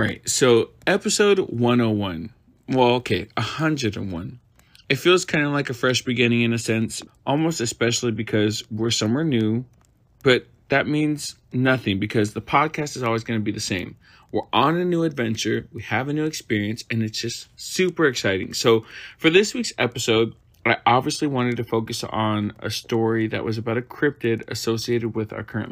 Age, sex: 30-49, male